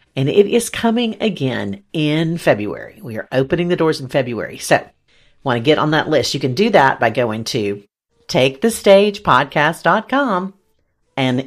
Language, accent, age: English, American, 50-69